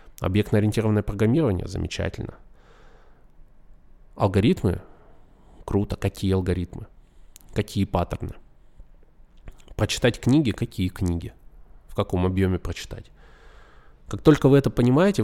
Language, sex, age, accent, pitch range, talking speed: Russian, male, 20-39, native, 90-110 Hz, 85 wpm